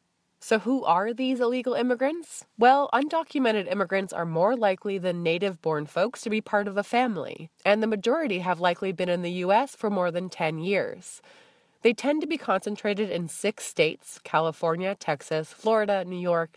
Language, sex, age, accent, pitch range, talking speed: English, female, 20-39, American, 165-220 Hz, 175 wpm